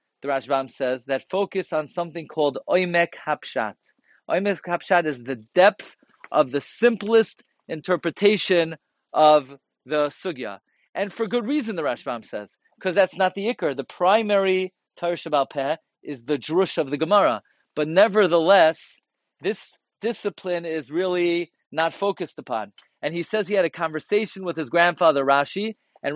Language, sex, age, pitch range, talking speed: English, male, 40-59, 155-195 Hz, 150 wpm